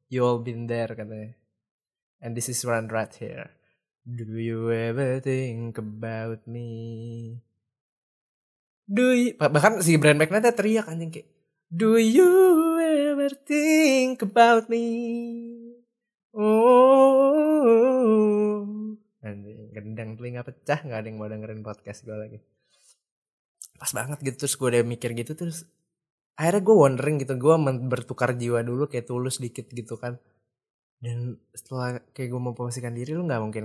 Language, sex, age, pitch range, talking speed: Indonesian, male, 20-39, 110-155 Hz, 135 wpm